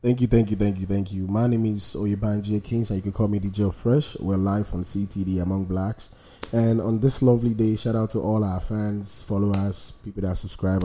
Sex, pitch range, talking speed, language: male, 100-115 Hz, 245 wpm, English